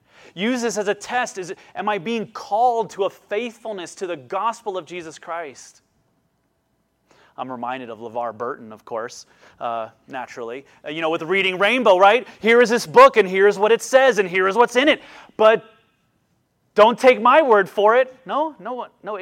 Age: 30-49